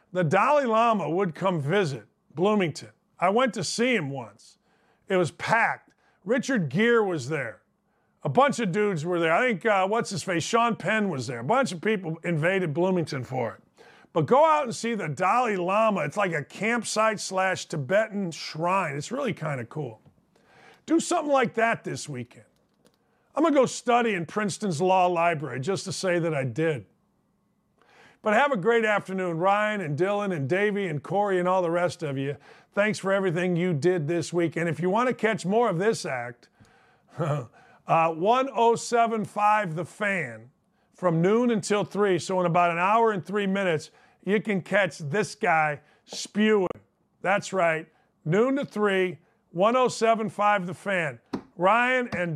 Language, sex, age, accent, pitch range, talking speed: English, male, 40-59, American, 170-220 Hz, 175 wpm